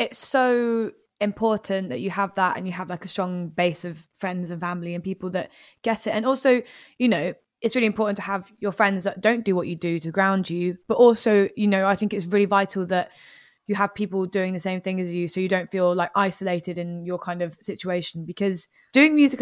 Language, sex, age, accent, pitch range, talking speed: English, female, 20-39, British, 180-210 Hz, 235 wpm